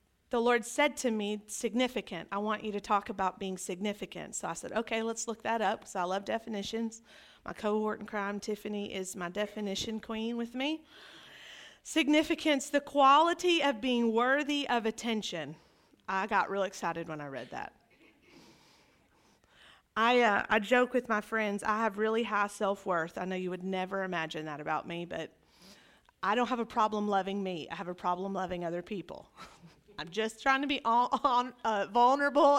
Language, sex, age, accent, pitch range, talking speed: English, female, 40-59, American, 200-280 Hz, 175 wpm